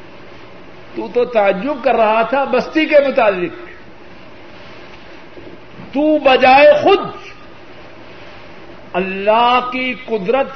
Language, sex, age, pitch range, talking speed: Urdu, male, 50-69, 195-255 Hz, 80 wpm